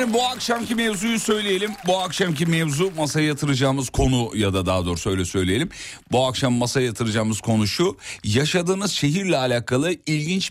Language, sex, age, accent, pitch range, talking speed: Turkish, male, 40-59, native, 120-160 Hz, 155 wpm